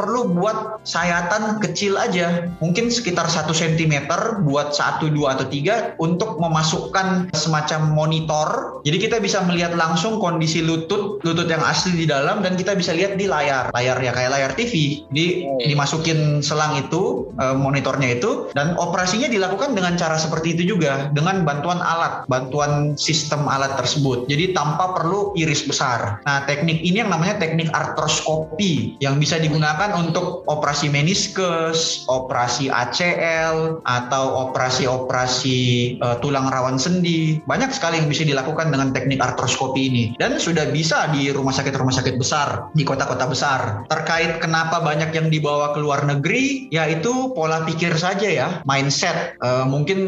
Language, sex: Indonesian, male